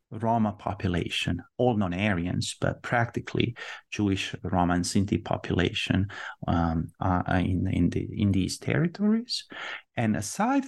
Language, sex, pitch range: English, male, 95-135 Hz